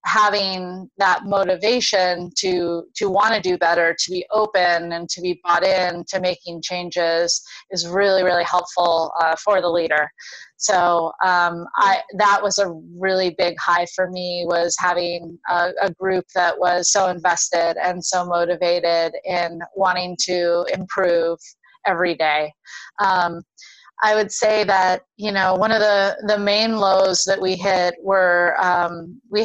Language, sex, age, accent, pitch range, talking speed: English, female, 30-49, American, 175-195 Hz, 155 wpm